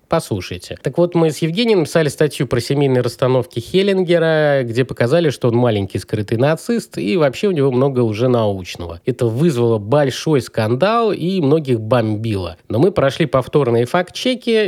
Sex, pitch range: male, 110-150 Hz